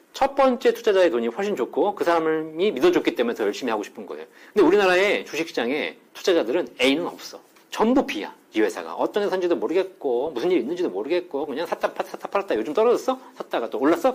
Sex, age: male, 40-59